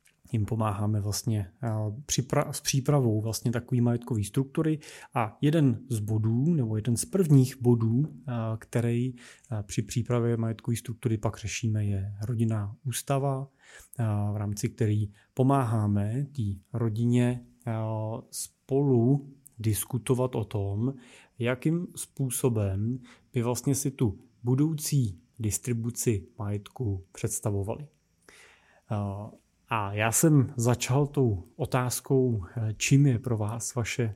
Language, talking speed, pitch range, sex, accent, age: Czech, 115 wpm, 110-135 Hz, male, native, 30-49